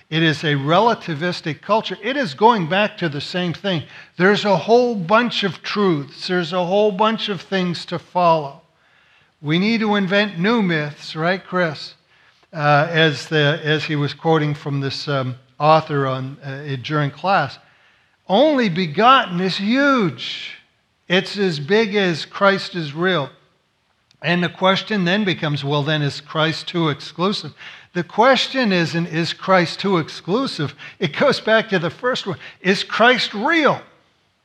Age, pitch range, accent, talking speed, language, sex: 60-79, 150-195 Hz, American, 150 wpm, English, male